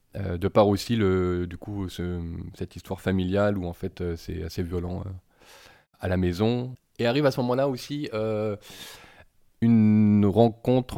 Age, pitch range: 20-39, 90-110 Hz